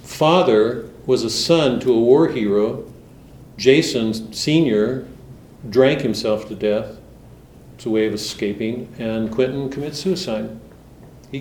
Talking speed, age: 125 wpm, 50-69